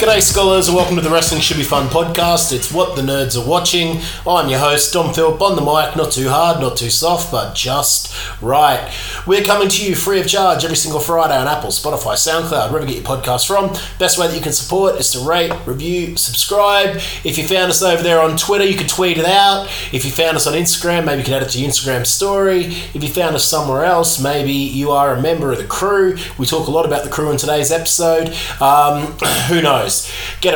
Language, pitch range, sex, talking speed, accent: English, 120-165 Hz, male, 240 wpm, Australian